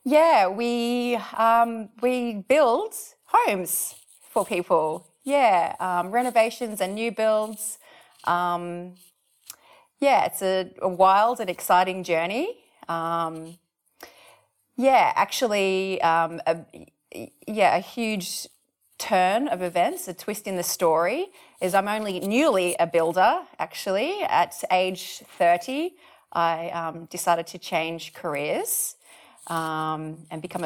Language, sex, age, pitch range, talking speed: English, female, 30-49, 175-230 Hz, 115 wpm